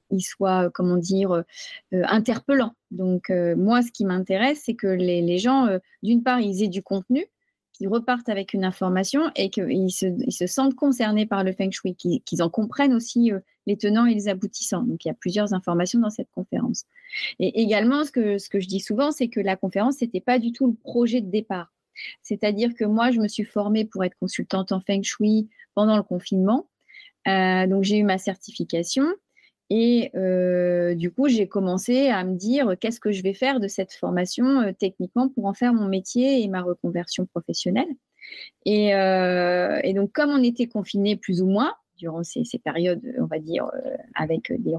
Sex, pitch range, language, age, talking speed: female, 185-245 Hz, French, 30-49, 210 wpm